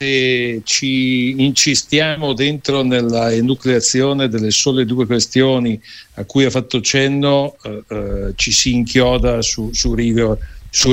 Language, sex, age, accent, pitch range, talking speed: Italian, male, 60-79, native, 115-140 Hz, 130 wpm